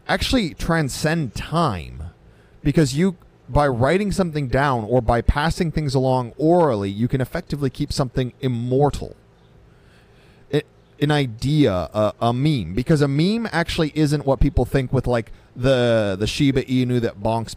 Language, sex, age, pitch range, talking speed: English, male, 30-49, 105-145 Hz, 145 wpm